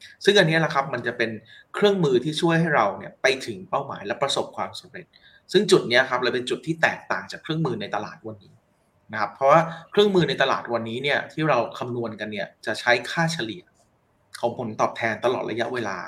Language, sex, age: Thai, male, 30-49